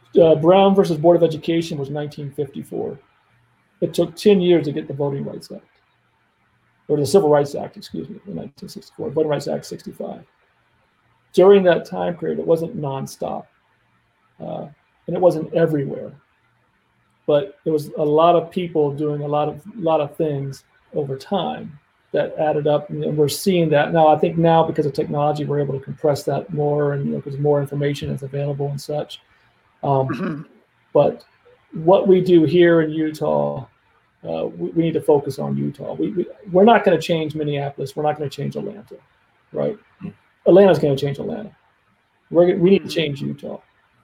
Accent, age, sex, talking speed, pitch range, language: American, 40-59, male, 180 wpm, 145-170 Hz, English